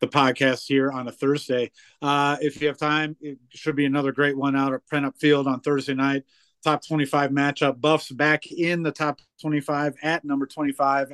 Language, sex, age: English, male, 30-49